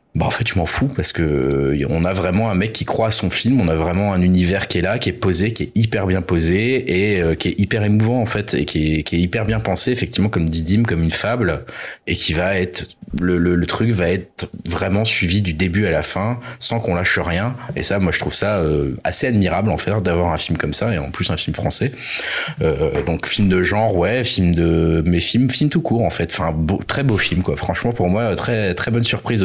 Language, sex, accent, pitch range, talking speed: French, male, French, 85-115 Hz, 265 wpm